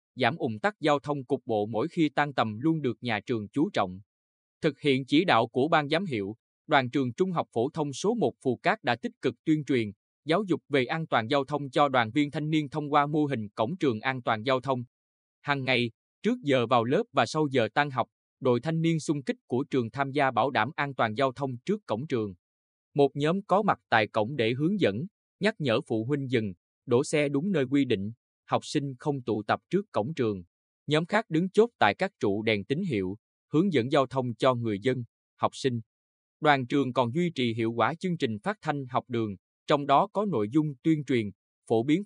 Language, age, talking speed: Vietnamese, 20-39, 230 wpm